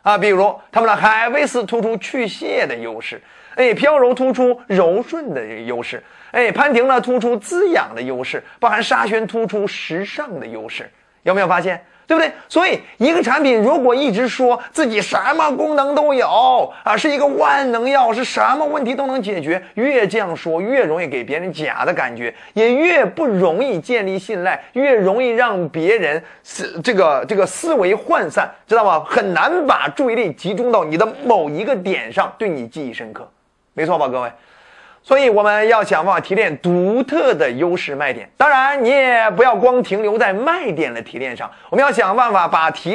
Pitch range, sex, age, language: 210-280 Hz, male, 30-49, Chinese